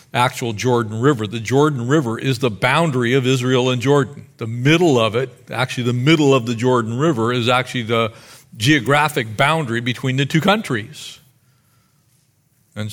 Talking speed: 160 wpm